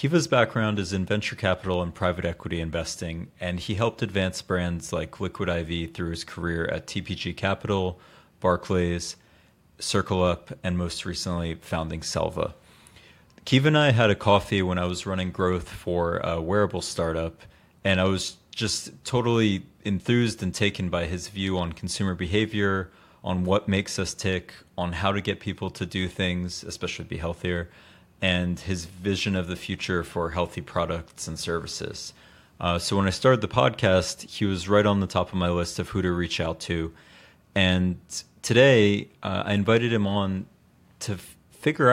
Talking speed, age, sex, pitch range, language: 170 wpm, 30-49, male, 90-105 Hz, English